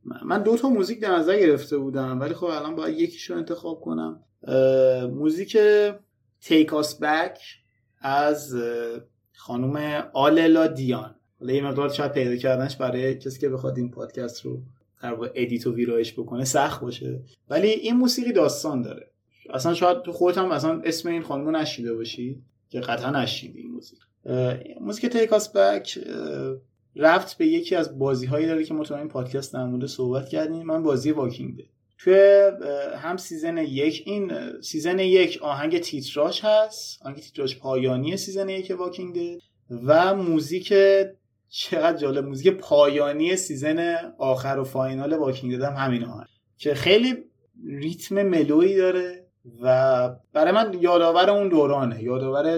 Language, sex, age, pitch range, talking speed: Persian, male, 30-49, 130-175 Hz, 145 wpm